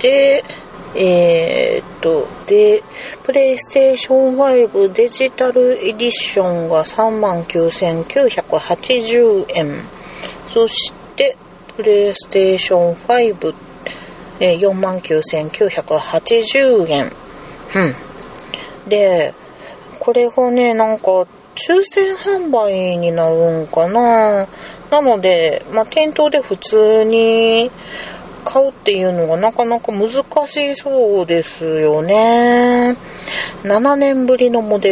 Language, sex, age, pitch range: Japanese, female, 40-59, 175-275 Hz